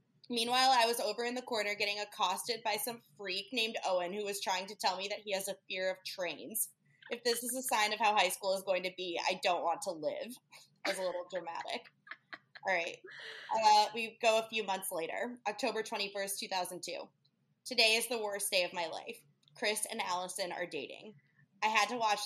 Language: English